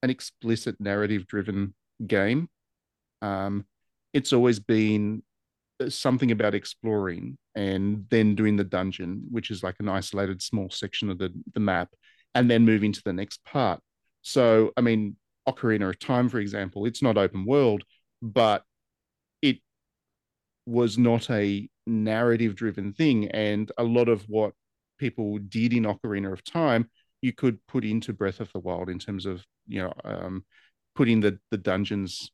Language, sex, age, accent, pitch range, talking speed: English, male, 40-59, Australian, 100-115 Hz, 150 wpm